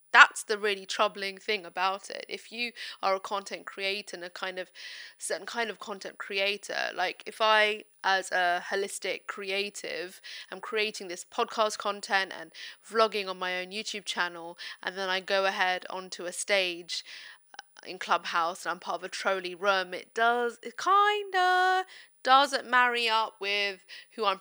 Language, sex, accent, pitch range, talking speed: English, female, British, 185-230 Hz, 170 wpm